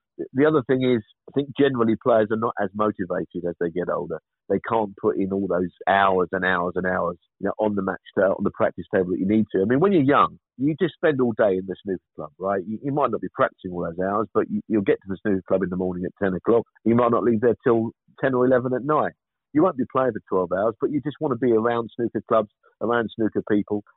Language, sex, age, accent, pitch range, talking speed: English, male, 50-69, British, 95-120 Hz, 275 wpm